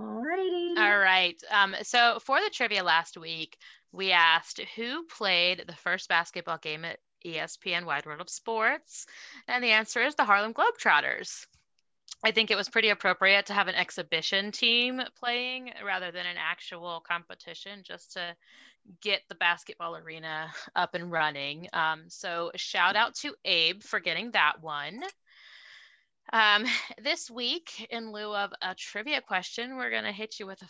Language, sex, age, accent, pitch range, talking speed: English, female, 20-39, American, 175-230 Hz, 160 wpm